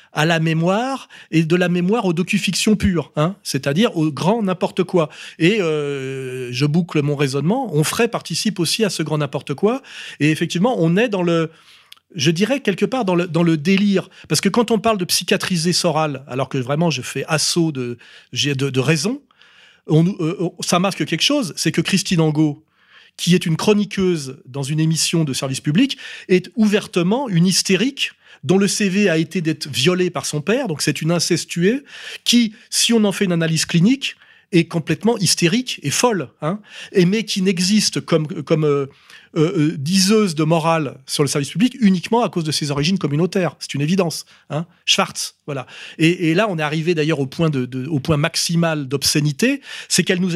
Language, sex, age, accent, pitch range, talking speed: French, male, 30-49, French, 155-200 Hz, 190 wpm